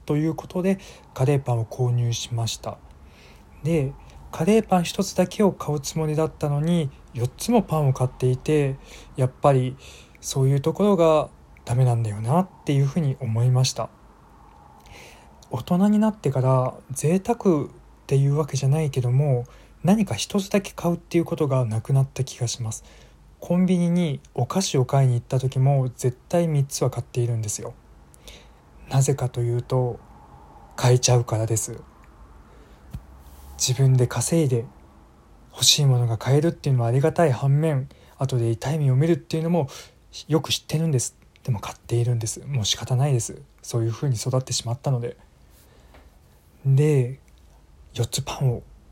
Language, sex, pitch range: Japanese, male, 120-155 Hz